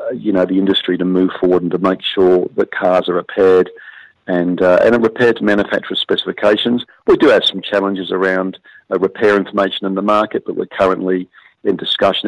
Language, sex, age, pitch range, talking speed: English, male, 50-69, 95-110 Hz, 195 wpm